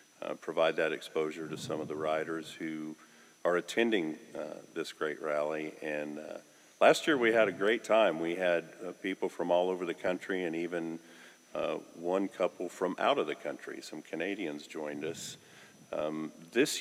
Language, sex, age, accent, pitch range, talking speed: English, male, 50-69, American, 80-95 Hz, 180 wpm